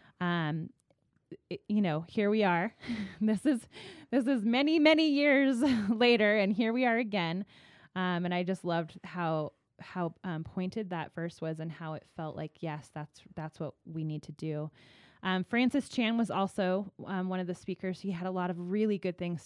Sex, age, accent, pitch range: female, 20-39, American, 165-200 Hz